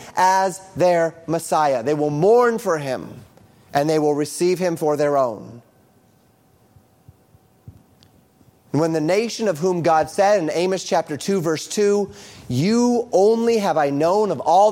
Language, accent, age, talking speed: English, American, 30-49, 145 wpm